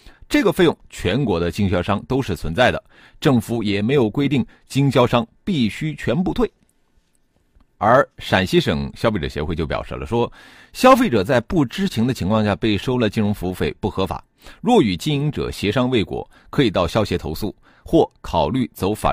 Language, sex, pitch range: Chinese, male, 95-140 Hz